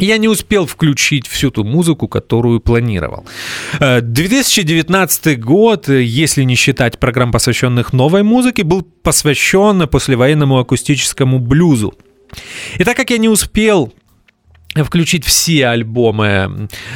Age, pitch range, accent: 30-49, 120-165 Hz, native